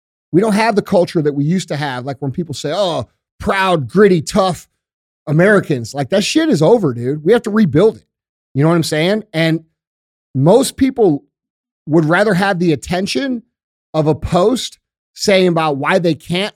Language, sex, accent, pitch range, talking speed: English, male, American, 150-200 Hz, 185 wpm